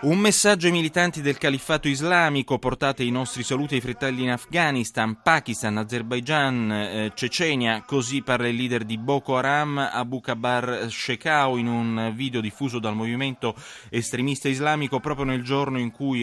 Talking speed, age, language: 155 wpm, 20-39, Italian